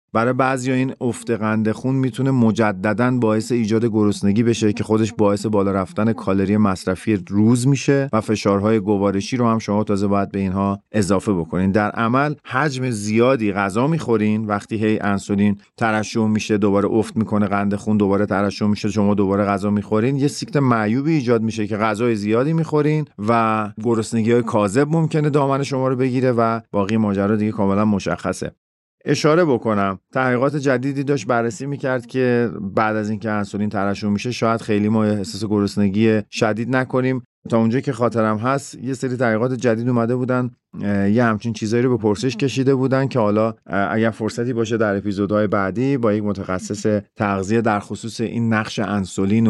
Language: Persian